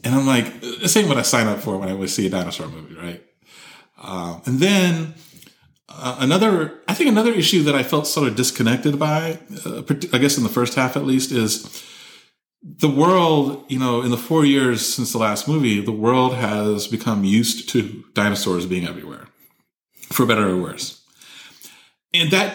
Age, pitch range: 30-49, 105-150 Hz